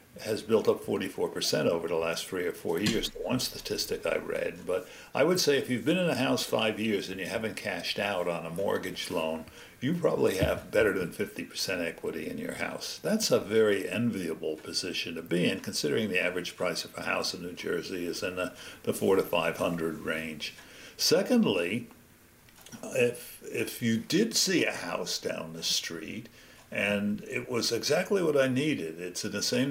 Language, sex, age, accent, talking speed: English, male, 60-79, American, 200 wpm